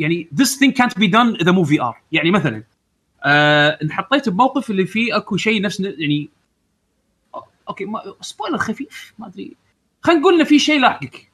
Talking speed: 175 wpm